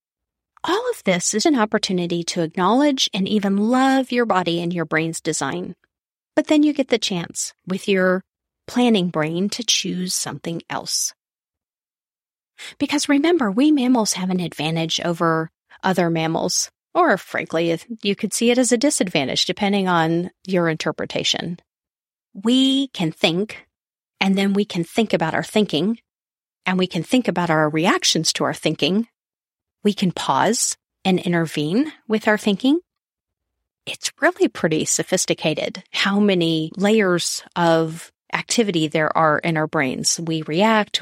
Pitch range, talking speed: 165-240 Hz, 145 wpm